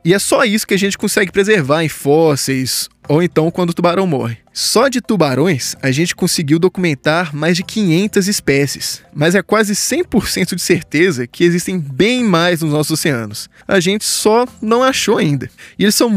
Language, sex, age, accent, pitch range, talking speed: Portuguese, male, 20-39, Brazilian, 150-210 Hz, 185 wpm